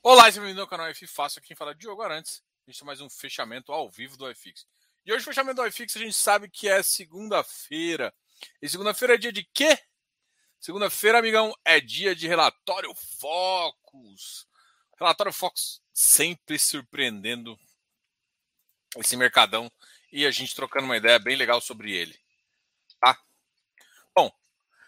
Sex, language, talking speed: male, Portuguese, 155 wpm